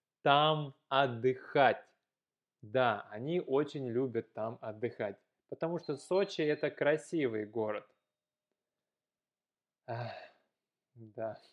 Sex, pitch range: male, 125-170 Hz